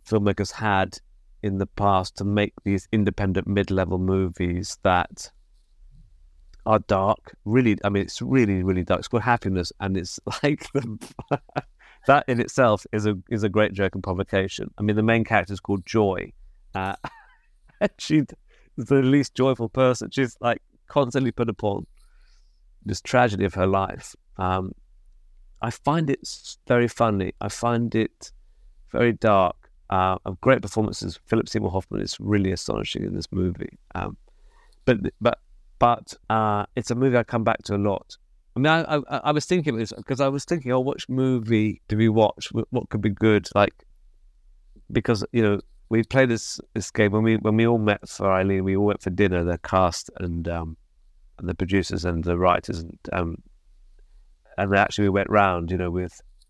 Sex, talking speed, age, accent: male, 175 wpm, 30-49, British